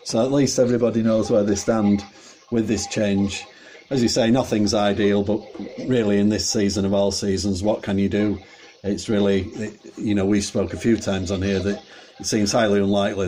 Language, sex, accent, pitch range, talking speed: English, male, British, 100-110 Hz, 200 wpm